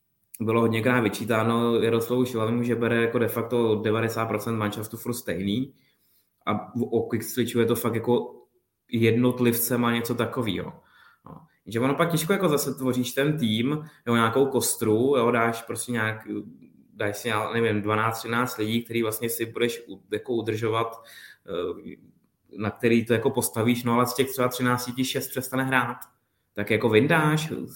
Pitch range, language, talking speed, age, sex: 110-125 Hz, Czech, 150 wpm, 20-39, male